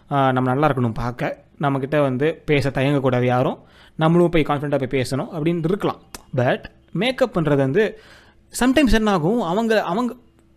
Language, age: Tamil, 30-49